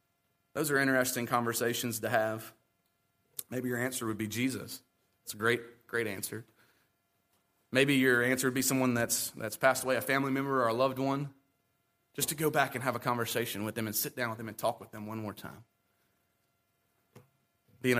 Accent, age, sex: American, 30-49, male